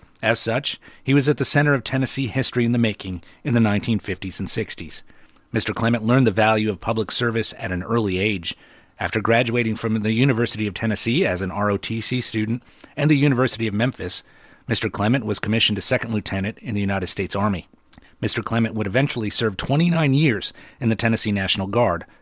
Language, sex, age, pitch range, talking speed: English, male, 30-49, 105-125 Hz, 190 wpm